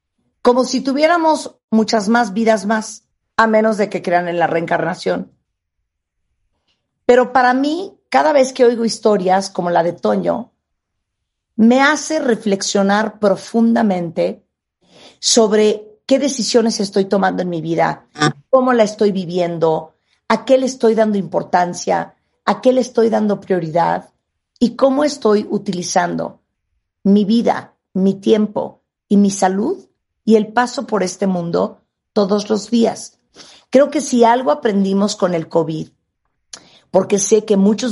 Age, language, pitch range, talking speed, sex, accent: 50-69, Spanish, 175-230 Hz, 140 wpm, female, Mexican